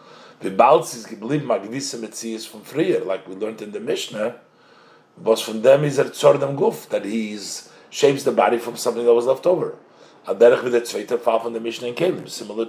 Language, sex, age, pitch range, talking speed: English, male, 50-69, 120-175 Hz, 165 wpm